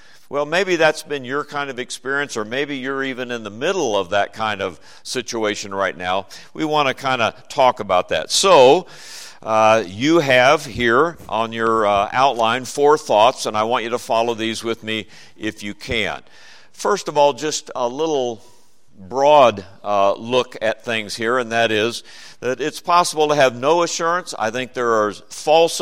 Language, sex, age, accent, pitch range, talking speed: English, male, 50-69, American, 110-145 Hz, 185 wpm